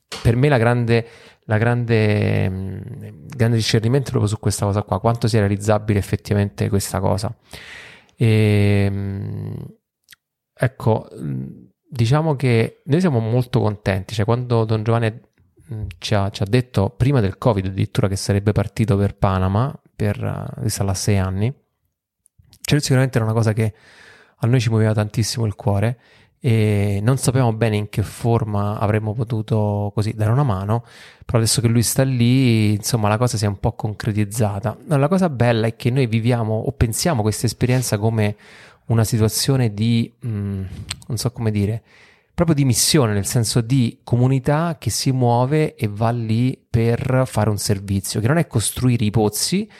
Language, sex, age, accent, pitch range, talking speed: Italian, male, 20-39, native, 105-125 Hz, 160 wpm